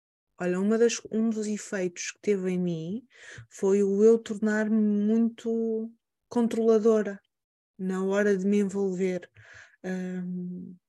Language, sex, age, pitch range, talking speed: Portuguese, female, 20-39, 185-225 Hz, 120 wpm